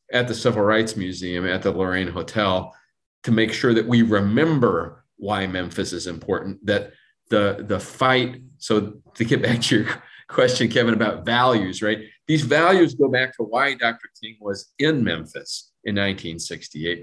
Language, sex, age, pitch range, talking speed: English, male, 40-59, 95-125 Hz, 165 wpm